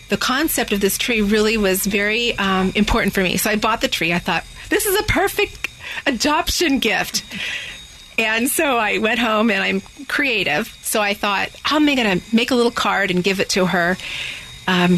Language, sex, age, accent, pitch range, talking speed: English, female, 40-59, American, 190-225 Hz, 205 wpm